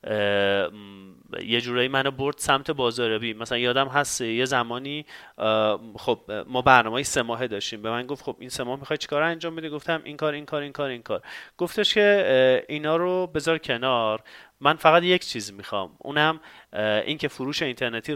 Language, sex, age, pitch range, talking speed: Persian, male, 30-49, 115-150 Hz, 170 wpm